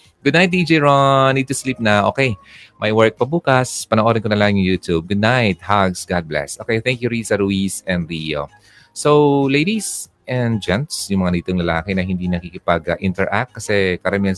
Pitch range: 90-125 Hz